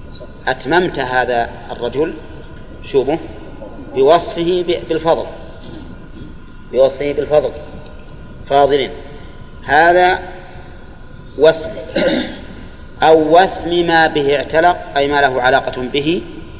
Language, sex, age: Arabic, male, 40-59